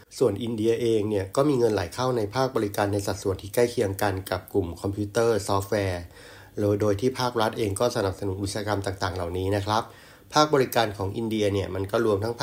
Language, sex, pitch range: Thai, male, 100-115 Hz